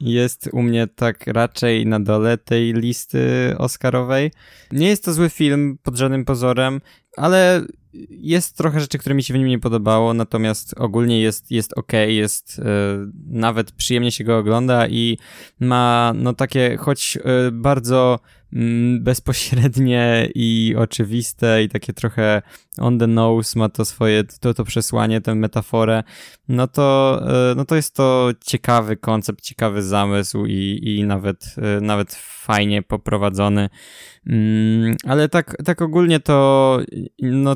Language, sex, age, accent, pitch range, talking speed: Polish, male, 20-39, native, 110-130 Hz, 145 wpm